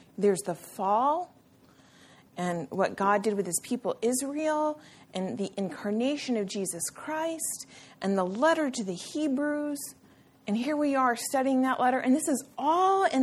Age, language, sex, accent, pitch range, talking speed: 40-59, English, female, American, 185-245 Hz, 160 wpm